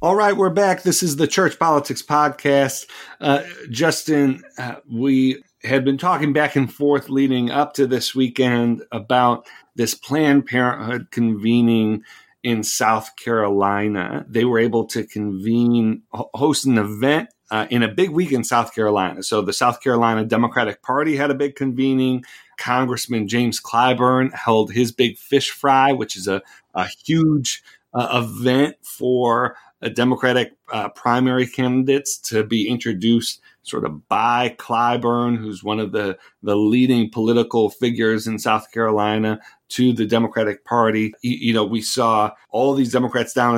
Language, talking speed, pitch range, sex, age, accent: English, 150 wpm, 115-135 Hz, male, 40-59, American